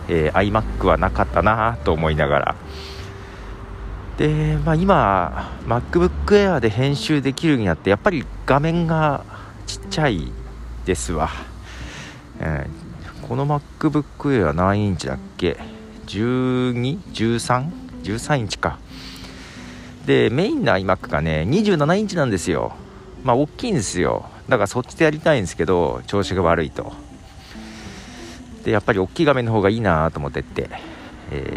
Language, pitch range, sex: Japanese, 80-125 Hz, male